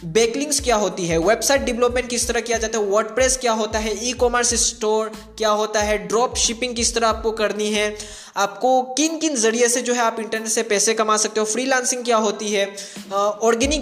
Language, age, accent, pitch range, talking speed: Hindi, 20-39, native, 200-235 Hz, 205 wpm